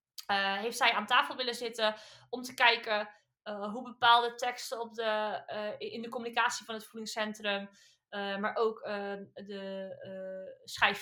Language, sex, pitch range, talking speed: Dutch, female, 215-280 Hz, 155 wpm